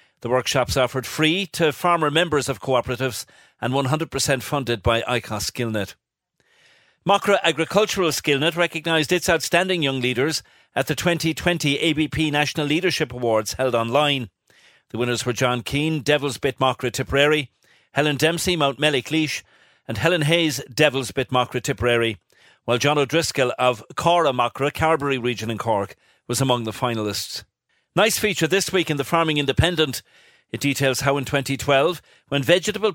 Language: English